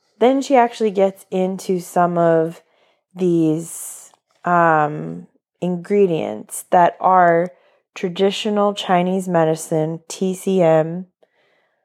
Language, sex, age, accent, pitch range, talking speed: English, female, 20-39, American, 165-195 Hz, 80 wpm